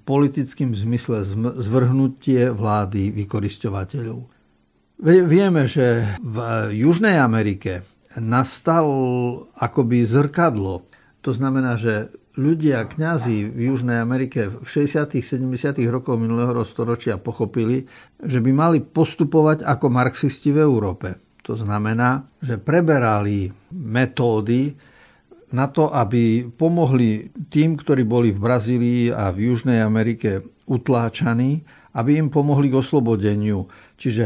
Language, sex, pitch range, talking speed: Slovak, male, 110-140 Hz, 105 wpm